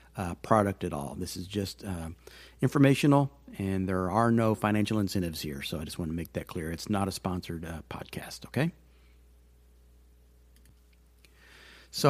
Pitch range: 95-115 Hz